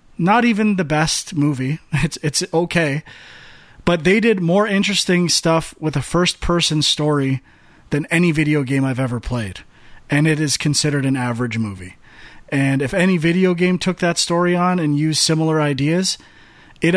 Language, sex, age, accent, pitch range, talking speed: English, male, 30-49, American, 130-165 Hz, 165 wpm